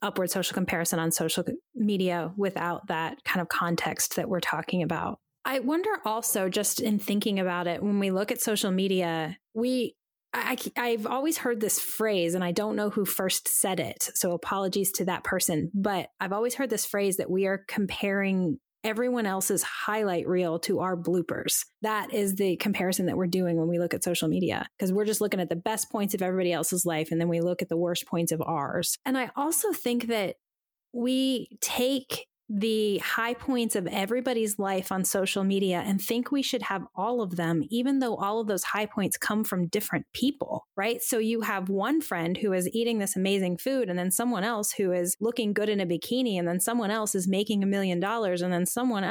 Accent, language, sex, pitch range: American, English, female, 180-230 Hz